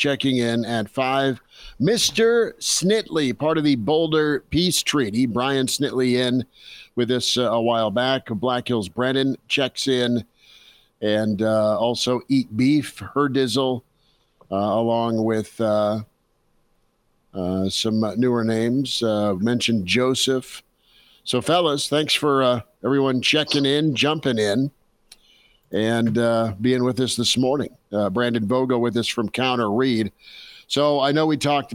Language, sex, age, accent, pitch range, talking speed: English, male, 50-69, American, 115-135 Hz, 140 wpm